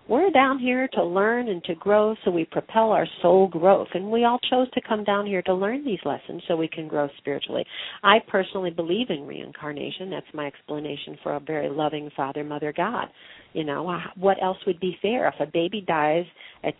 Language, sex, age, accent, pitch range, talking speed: English, female, 50-69, American, 165-220 Hz, 205 wpm